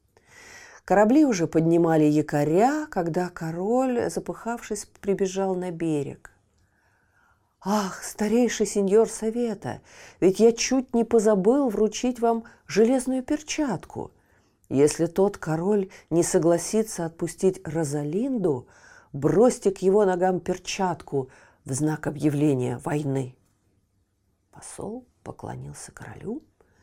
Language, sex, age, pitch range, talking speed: Russian, female, 50-69, 155-230 Hz, 95 wpm